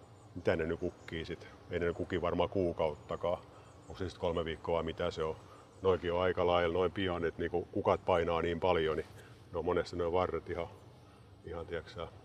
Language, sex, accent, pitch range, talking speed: Finnish, male, native, 85-105 Hz, 180 wpm